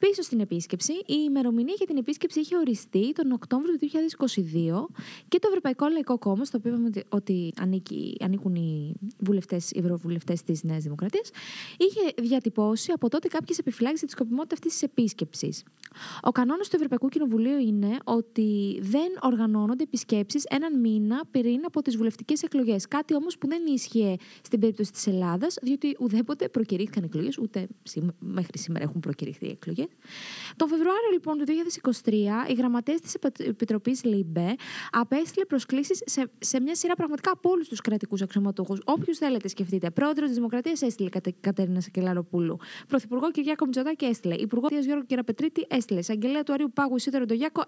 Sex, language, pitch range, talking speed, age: female, Greek, 205-300 Hz, 145 wpm, 20-39